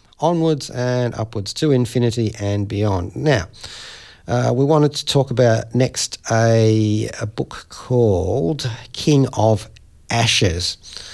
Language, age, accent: English, 40-59, Australian